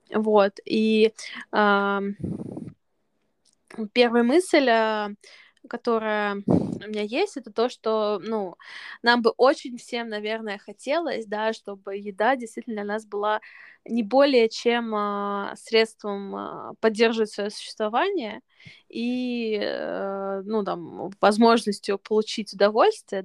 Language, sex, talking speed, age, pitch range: Russian, female, 100 wpm, 20-39, 205-235 Hz